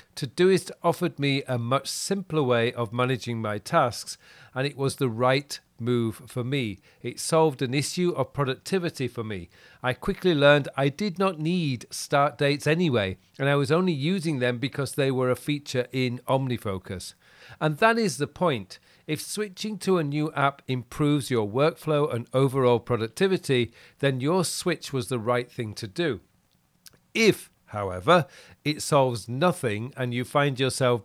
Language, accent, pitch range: English, British, 120-155 Hz